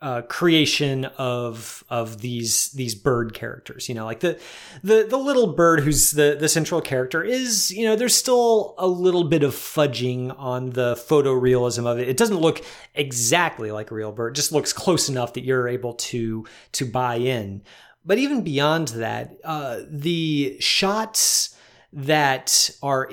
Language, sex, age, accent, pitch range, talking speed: English, male, 30-49, American, 125-160 Hz, 170 wpm